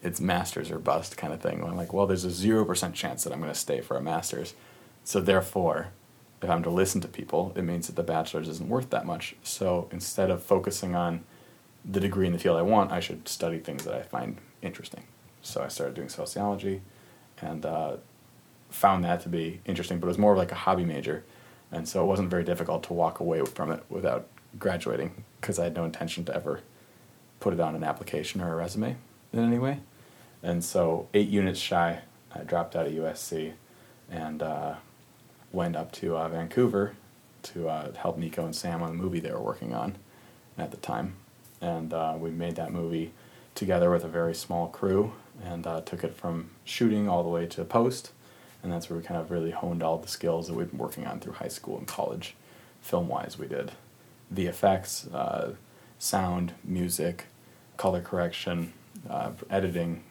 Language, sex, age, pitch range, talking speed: English, male, 30-49, 85-100 Hz, 200 wpm